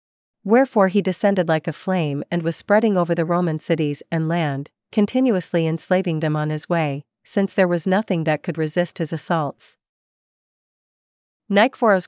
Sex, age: female, 40-59